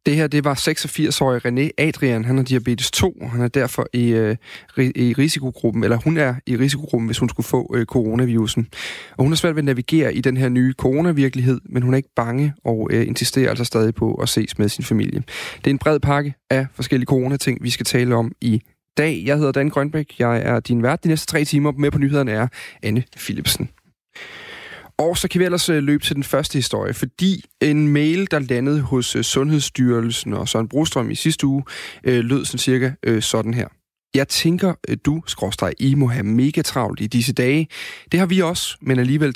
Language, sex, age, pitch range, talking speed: Danish, male, 30-49, 120-145 Hz, 200 wpm